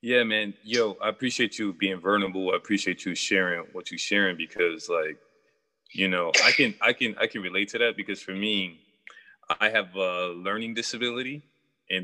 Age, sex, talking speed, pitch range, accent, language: 20-39, male, 185 wpm, 95-150 Hz, American, English